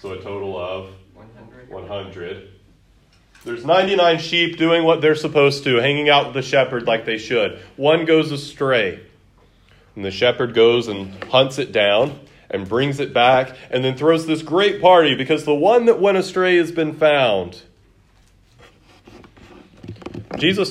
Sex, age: male, 30-49